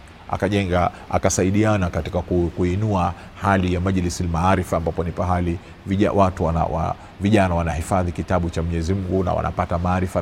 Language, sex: Swahili, male